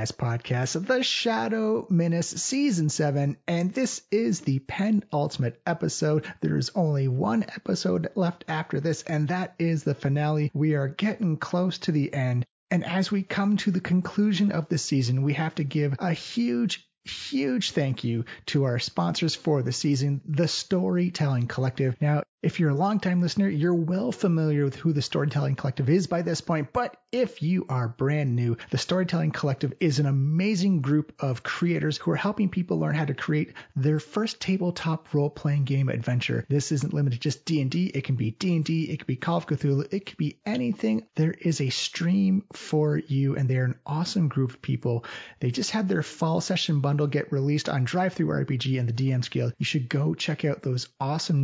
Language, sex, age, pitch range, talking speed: English, male, 30-49, 140-180 Hz, 190 wpm